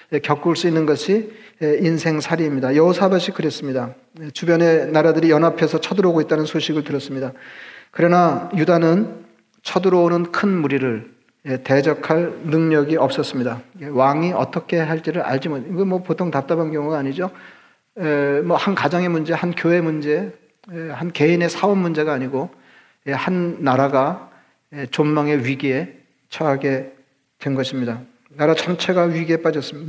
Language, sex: Korean, male